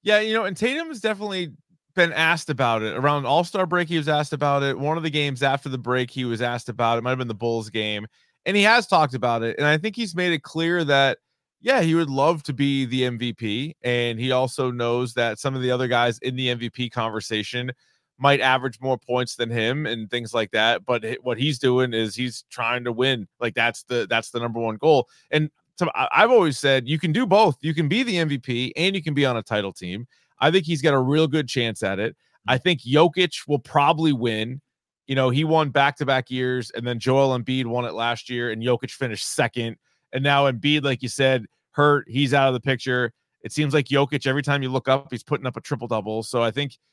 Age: 20-39